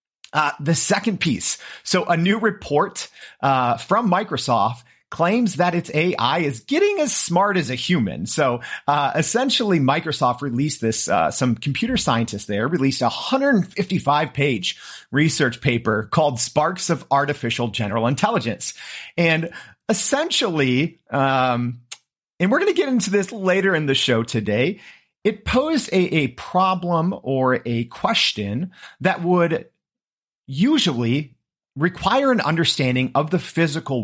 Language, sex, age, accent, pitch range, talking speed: English, male, 40-59, American, 125-185 Hz, 135 wpm